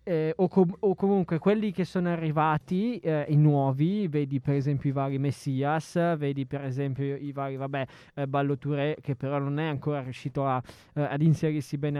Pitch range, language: 140-170 Hz, Italian